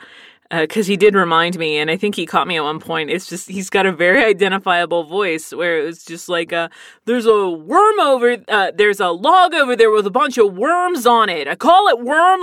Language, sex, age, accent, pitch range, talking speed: English, female, 30-49, American, 165-230 Hz, 240 wpm